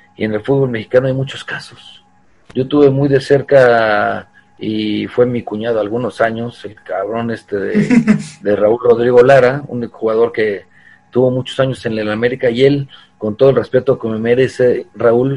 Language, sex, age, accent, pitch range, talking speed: Spanish, male, 40-59, Mexican, 105-140 Hz, 180 wpm